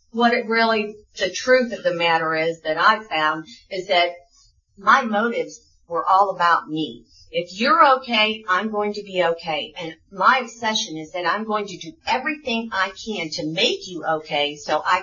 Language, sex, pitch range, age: English, female, 170-230 Hz, 50-69